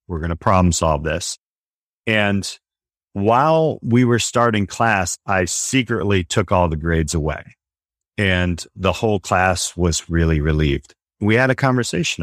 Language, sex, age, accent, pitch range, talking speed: English, male, 40-59, American, 85-105 Hz, 145 wpm